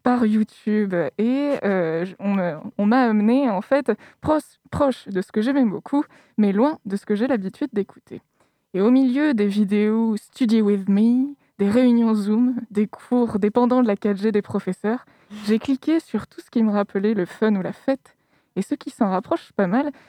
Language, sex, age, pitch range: French, female, 20-39, 200-260 Hz